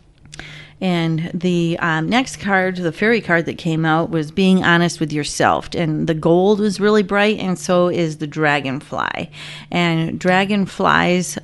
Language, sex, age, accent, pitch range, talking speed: English, female, 40-59, American, 160-185 Hz, 150 wpm